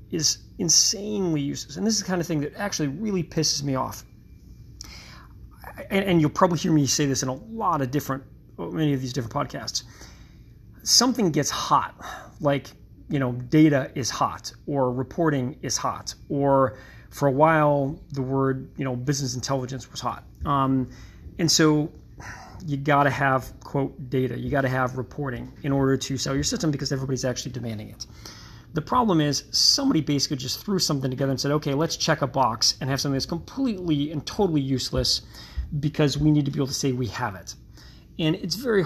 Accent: American